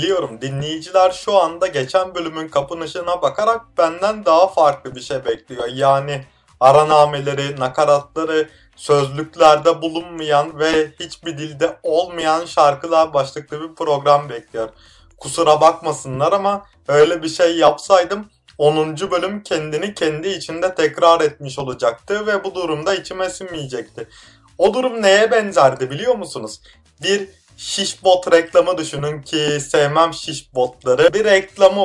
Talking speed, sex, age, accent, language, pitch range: 120 wpm, male, 30-49, native, Turkish, 150-185 Hz